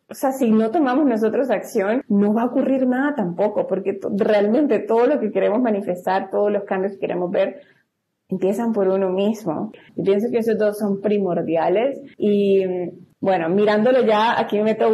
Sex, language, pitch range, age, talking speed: female, Spanish, 180-225 Hz, 30-49, 180 wpm